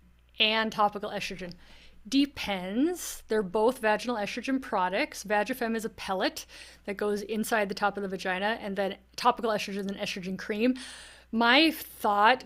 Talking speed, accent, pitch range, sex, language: 145 wpm, American, 195-225 Hz, female, English